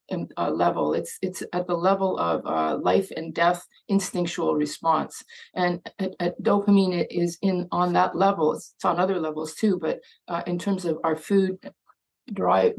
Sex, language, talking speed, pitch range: female, English, 170 wpm, 170-200 Hz